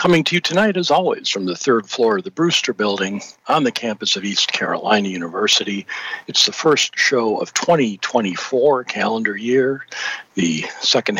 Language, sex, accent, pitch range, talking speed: English, male, American, 100-130 Hz, 165 wpm